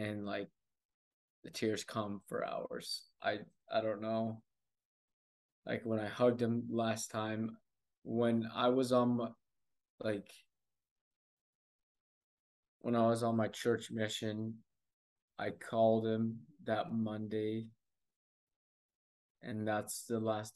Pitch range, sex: 110-120 Hz, male